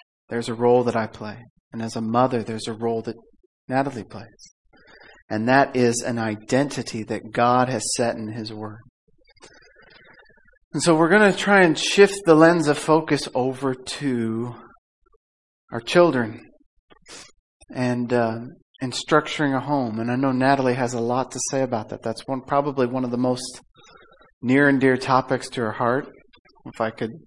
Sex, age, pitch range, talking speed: male, 40-59, 115-135 Hz, 170 wpm